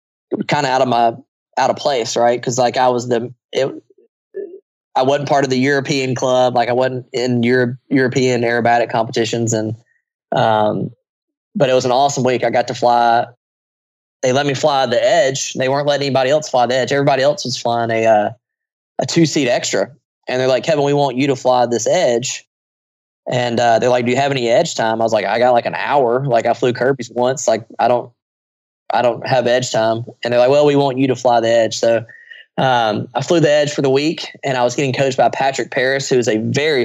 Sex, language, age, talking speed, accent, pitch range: male, English, 20-39, 230 wpm, American, 120-135 Hz